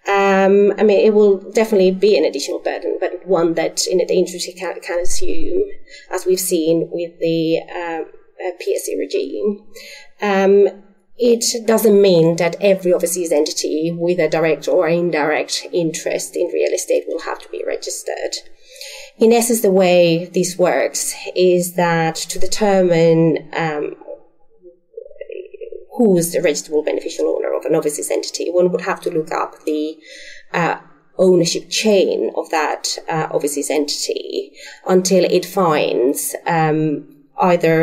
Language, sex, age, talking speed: English, female, 30-49, 145 wpm